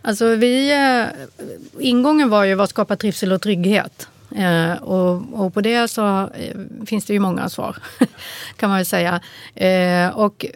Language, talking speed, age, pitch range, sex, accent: Swedish, 170 wpm, 30-49, 180-215 Hz, female, native